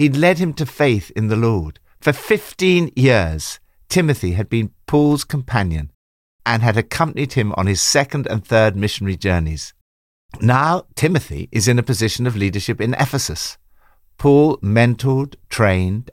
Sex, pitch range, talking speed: male, 95-140 Hz, 150 wpm